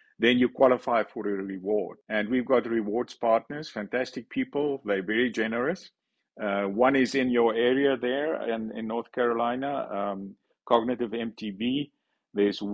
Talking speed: 145 wpm